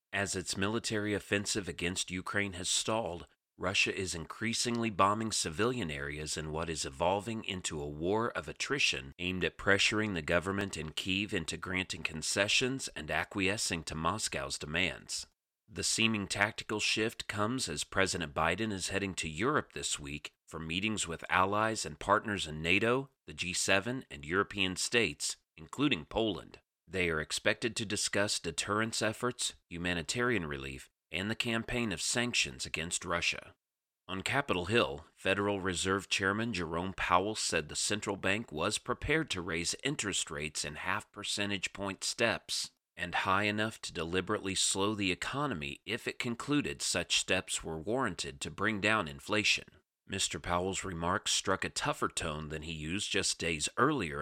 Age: 40-59